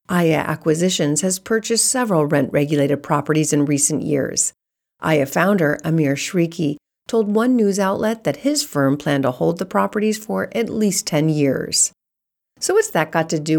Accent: American